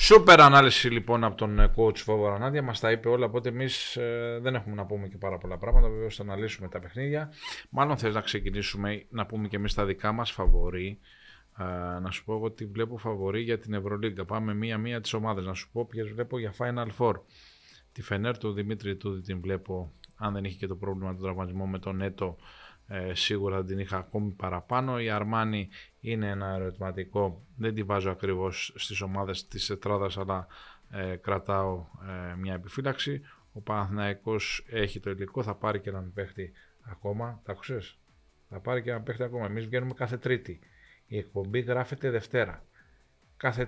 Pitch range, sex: 95-120 Hz, male